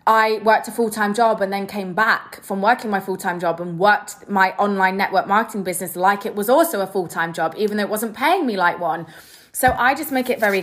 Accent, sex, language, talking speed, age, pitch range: British, female, English, 235 wpm, 20-39, 185-235 Hz